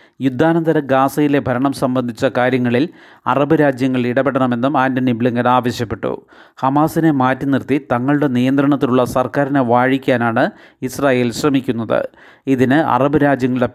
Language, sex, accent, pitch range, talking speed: Malayalam, male, native, 125-140 Hz, 95 wpm